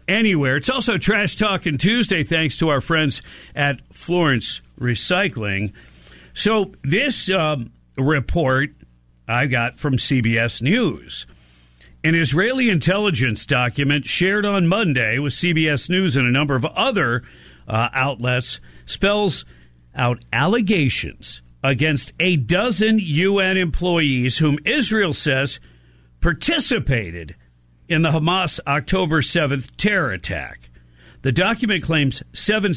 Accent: American